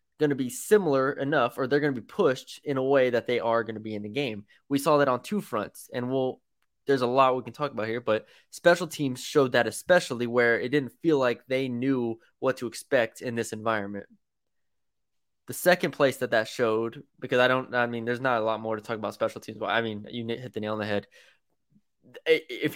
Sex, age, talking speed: male, 20-39, 235 wpm